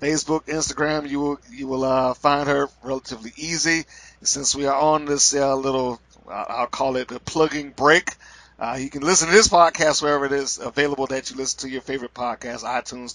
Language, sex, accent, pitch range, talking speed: English, male, American, 130-170 Hz, 200 wpm